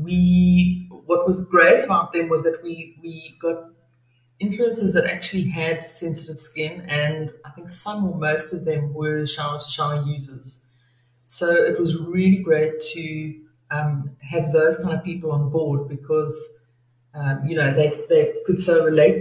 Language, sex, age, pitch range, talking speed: English, female, 40-59, 145-170 Hz, 170 wpm